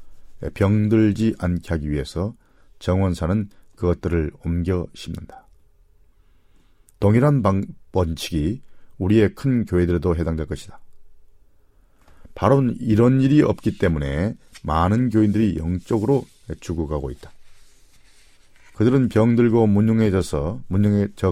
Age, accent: 40-59, native